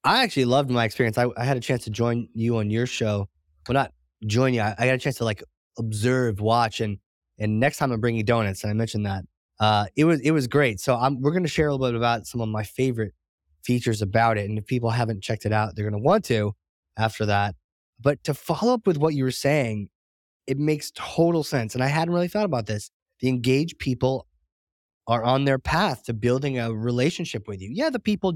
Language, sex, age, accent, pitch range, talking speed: English, male, 20-39, American, 110-140 Hz, 235 wpm